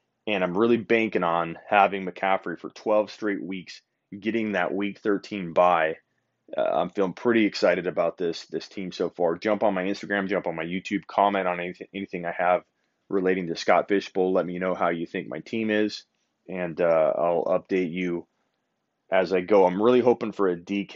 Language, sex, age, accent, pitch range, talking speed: English, male, 30-49, American, 90-105 Hz, 195 wpm